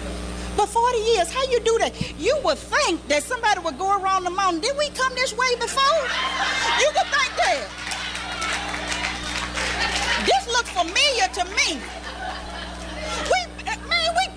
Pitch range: 290-420 Hz